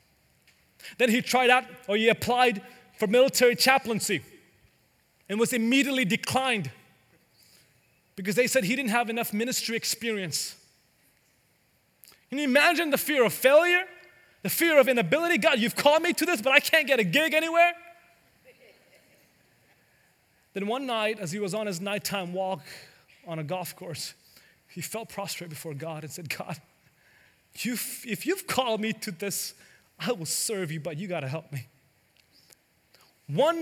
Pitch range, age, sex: 175-275 Hz, 30-49, male